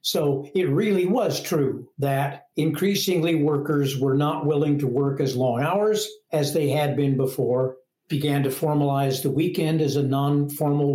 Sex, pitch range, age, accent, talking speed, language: male, 140-165 Hz, 60-79, American, 160 wpm, English